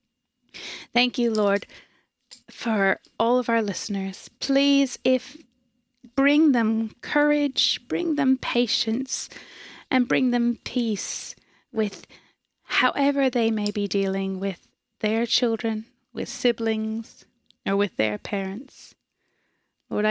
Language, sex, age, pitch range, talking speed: English, female, 20-39, 210-250 Hz, 105 wpm